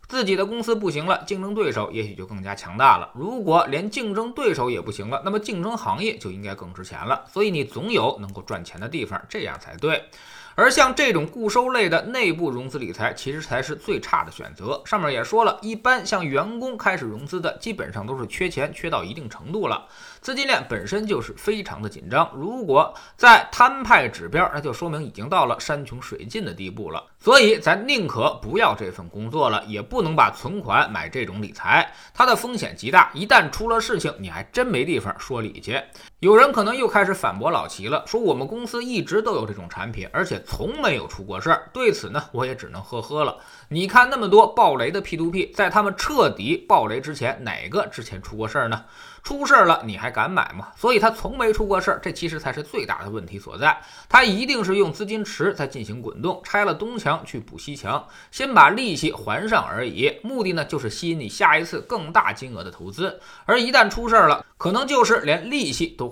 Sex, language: male, Chinese